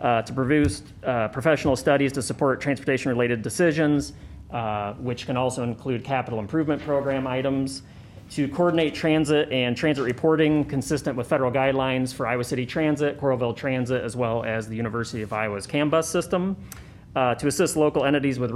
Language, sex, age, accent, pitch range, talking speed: English, male, 30-49, American, 115-145 Hz, 165 wpm